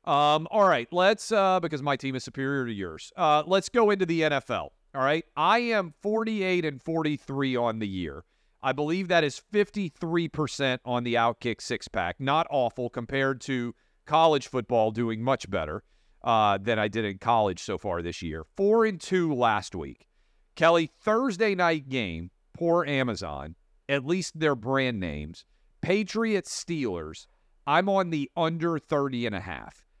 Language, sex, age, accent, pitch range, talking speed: English, male, 40-59, American, 120-165 Hz, 150 wpm